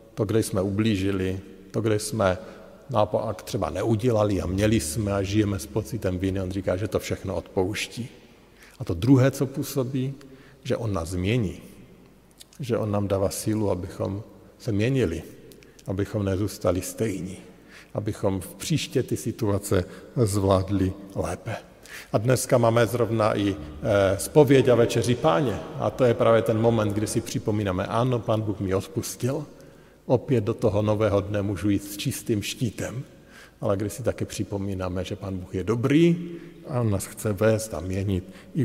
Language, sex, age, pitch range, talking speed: Slovak, male, 50-69, 95-115 Hz, 160 wpm